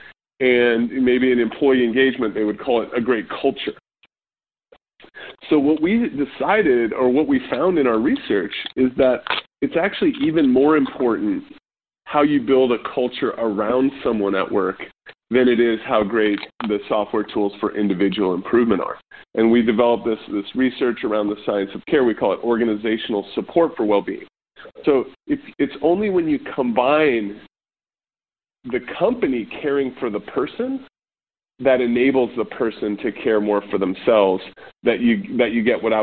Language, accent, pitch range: English, American, 105-135 Hz